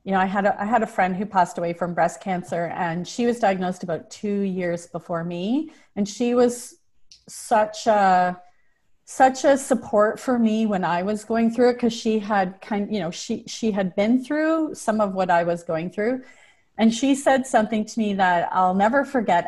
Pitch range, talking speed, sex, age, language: 185-230 Hz, 210 wpm, female, 30-49, English